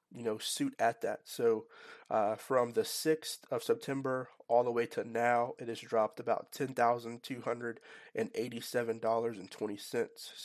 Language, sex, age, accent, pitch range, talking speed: English, male, 30-49, American, 120-150 Hz, 125 wpm